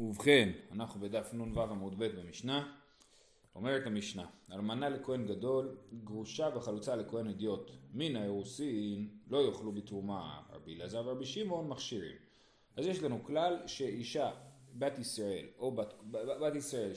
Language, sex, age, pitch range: Hebrew, male, 30-49, 105-145 Hz